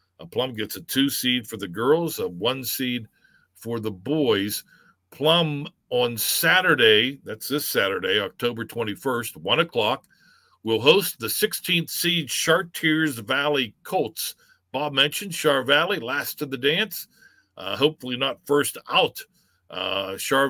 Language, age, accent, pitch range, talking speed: English, 50-69, American, 115-165 Hz, 140 wpm